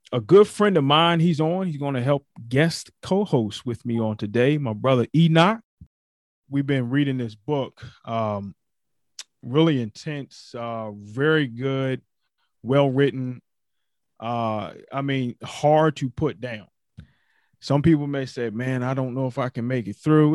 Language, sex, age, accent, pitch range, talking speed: English, male, 30-49, American, 120-145 Hz, 155 wpm